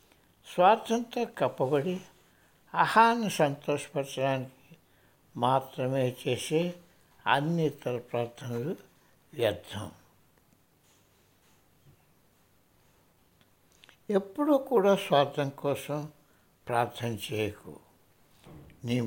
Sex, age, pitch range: male, 60-79, 125-180 Hz